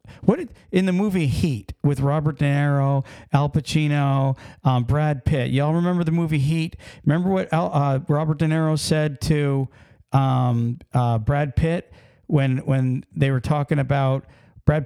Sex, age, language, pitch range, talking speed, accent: male, 50-69, English, 130-170 Hz, 160 wpm, American